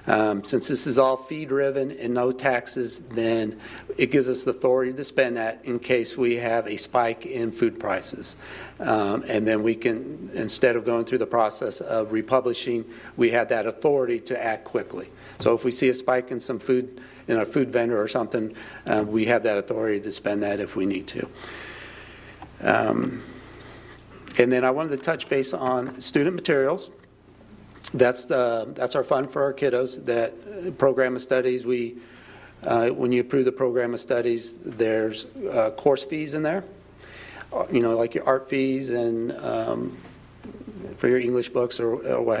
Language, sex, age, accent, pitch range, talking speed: English, male, 50-69, American, 115-130 Hz, 180 wpm